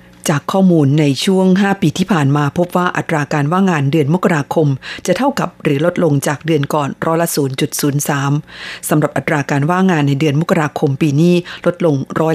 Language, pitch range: Thai, 145-170 Hz